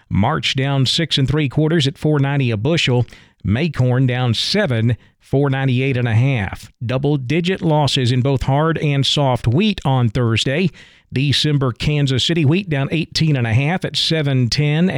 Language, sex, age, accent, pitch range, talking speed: English, male, 50-69, American, 125-165 Hz, 155 wpm